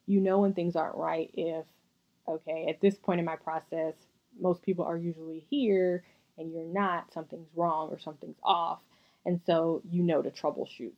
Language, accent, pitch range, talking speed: English, American, 165-195 Hz, 180 wpm